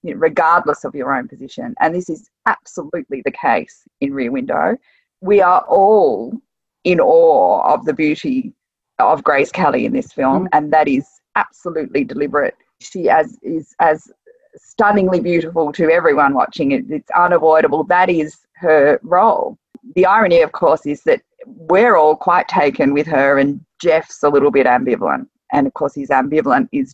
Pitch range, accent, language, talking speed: 150-250 Hz, Australian, English, 160 wpm